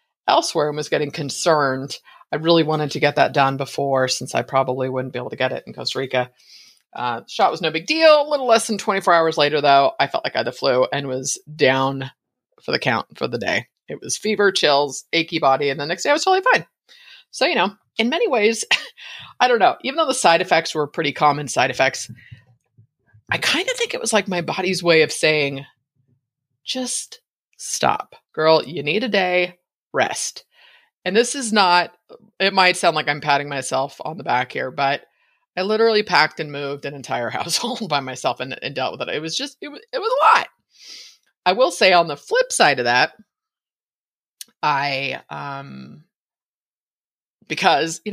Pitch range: 140-210 Hz